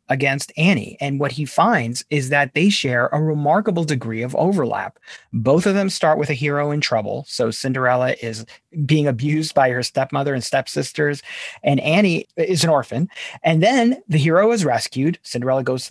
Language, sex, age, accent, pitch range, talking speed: English, male, 40-59, American, 130-165 Hz, 180 wpm